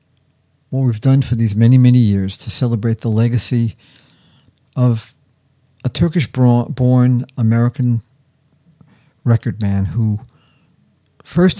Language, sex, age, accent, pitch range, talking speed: English, male, 50-69, American, 105-130 Hz, 100 wpm